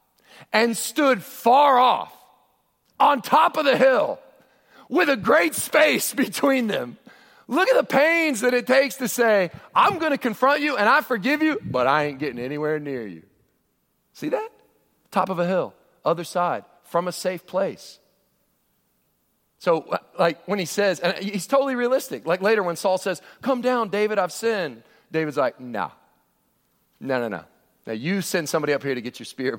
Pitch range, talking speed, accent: 165-235 Hz, 175 wpm, American